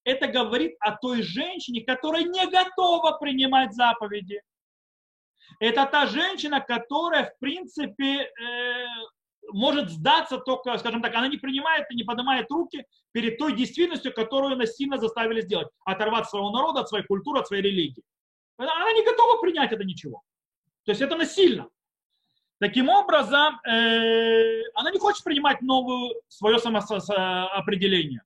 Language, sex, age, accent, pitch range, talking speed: Russian, male, 30-49, native, 210-285 Hz, 135 wpm